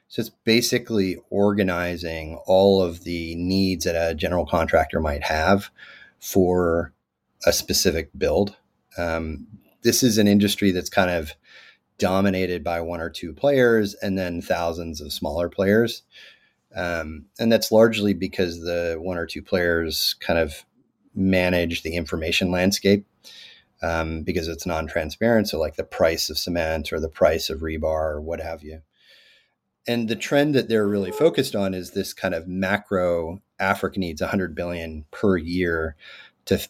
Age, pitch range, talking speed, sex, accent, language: 30-49, 85-100 Hz, 150 wpm, male, American, English